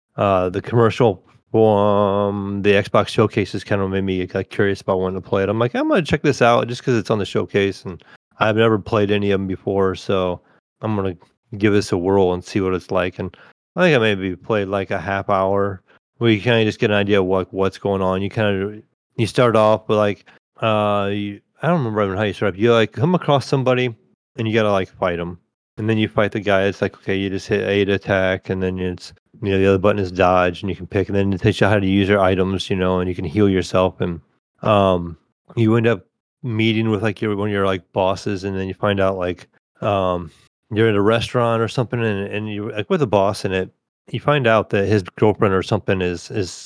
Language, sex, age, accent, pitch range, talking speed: English, male, 30-49, American, 95-110 Hz, 255 wpm